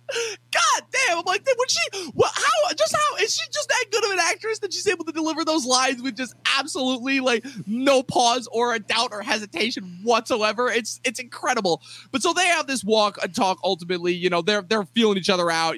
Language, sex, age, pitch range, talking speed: English, male, 20-39, 175-230 Hz, 220 wpm